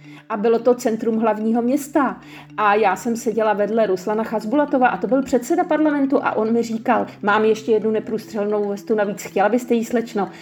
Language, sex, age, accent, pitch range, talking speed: Czech, female, 40-59, native, 205-275 Hz, 185 wpm